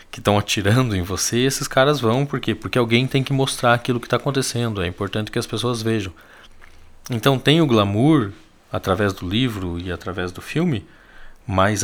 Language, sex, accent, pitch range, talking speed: Portuguese, male, Brazilian, 95-125 Hz, 190 wpm